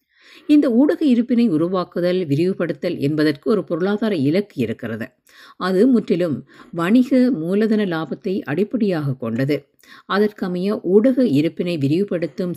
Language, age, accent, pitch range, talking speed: Tamil, 50-69, native, 155-220 Hz, 100 wpm